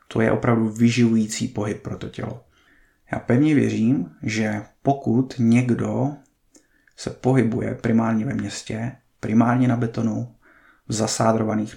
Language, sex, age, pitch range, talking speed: Czech, male, 20-39, 105-120 Hz, 120 wpm